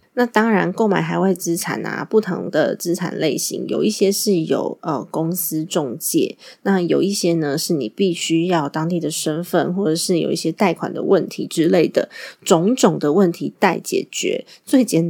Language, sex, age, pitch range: Chinese, female, 20-39, 165-205 Hz